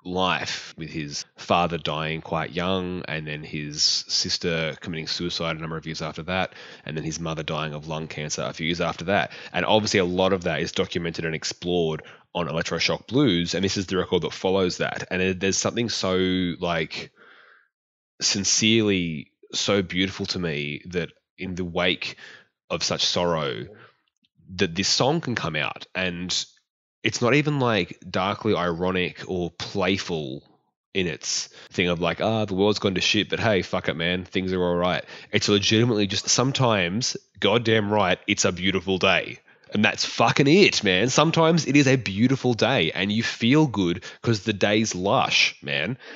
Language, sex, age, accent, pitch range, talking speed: English, male, 20-39, Australian, 85-105 Hz, 175 wpm